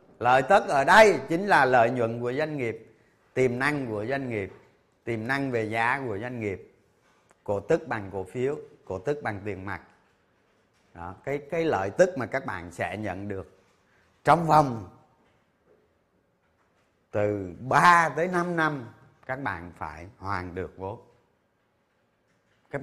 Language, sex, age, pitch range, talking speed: Vietnamese, male, 30-49, 115-175 Hz, 150 wpm